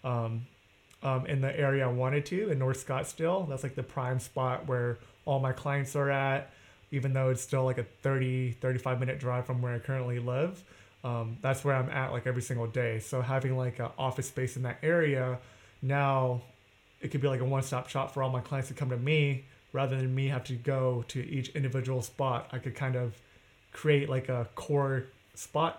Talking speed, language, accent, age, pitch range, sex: 210 wpm, English, American, 30-49, 125-140 Hz, male